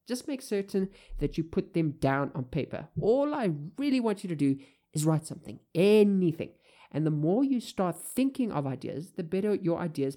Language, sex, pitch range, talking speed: English, male, 140-190 Hz, 195 wpm